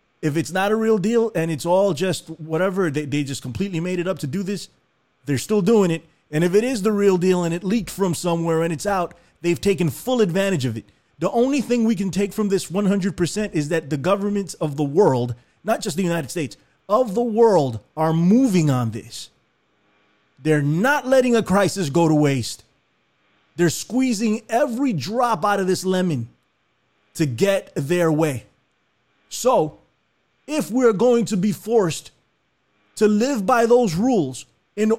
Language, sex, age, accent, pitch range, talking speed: English, male, 30-49, American, 150-210 Hz, 185 wpm